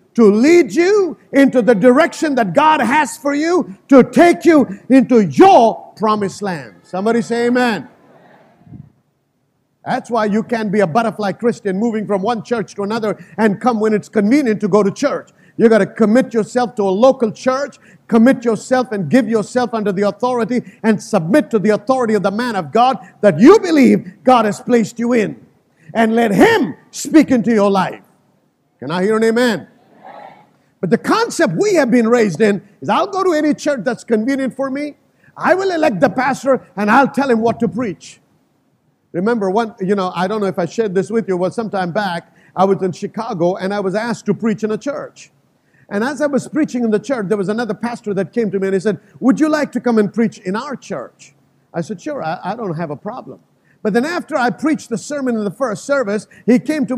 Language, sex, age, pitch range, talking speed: English, male, 50-69, 205-260 Hz, 215 wpm